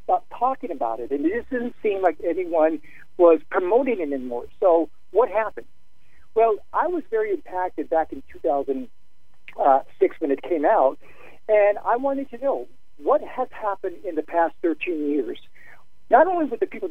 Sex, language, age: male, English, 60-79